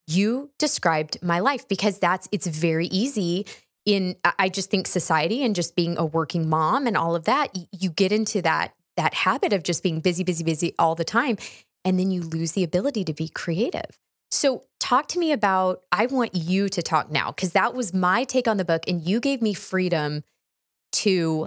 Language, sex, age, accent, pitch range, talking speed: English, female, 20-39, American, 165-205 Hz, 205 wpm